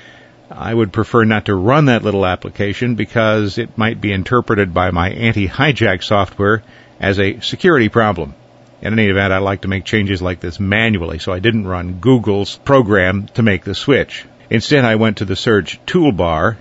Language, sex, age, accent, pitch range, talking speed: English, male, 50-69, American, 100-120 Hz, 180 wpm